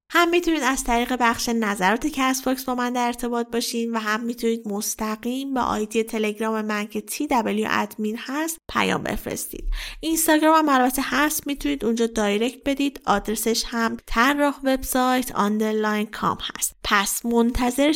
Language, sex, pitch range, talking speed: Persian, female, 215-265 Hz, 145 wpm